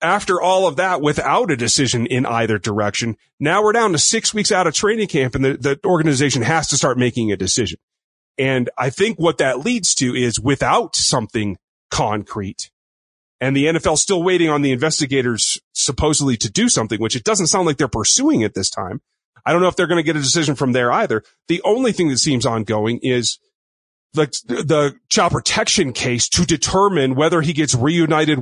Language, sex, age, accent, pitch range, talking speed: English, male, 30-49, American, 120-160 Hz, 200 wpm